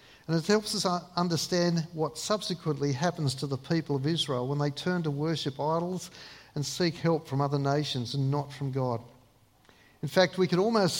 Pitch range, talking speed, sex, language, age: 135-180 Hz, 185 wpm, male, English, 50-69